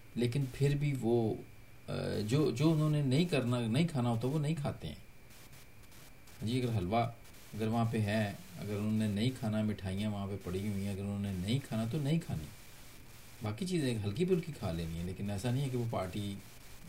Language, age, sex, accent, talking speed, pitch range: Hindi, 40-59, male, native, 190 wpm, 100-130 Hz